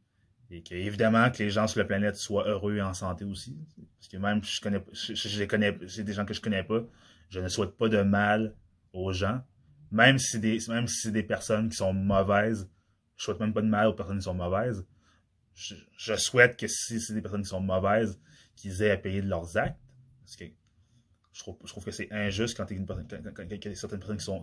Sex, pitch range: male, 95-110 Hz